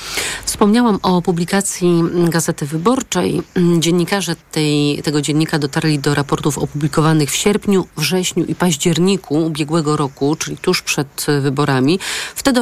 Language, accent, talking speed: Polish, native, 115 wpm